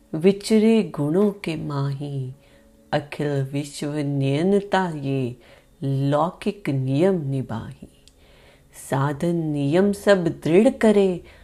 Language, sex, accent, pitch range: Hindi, female, native, 140-200 Hz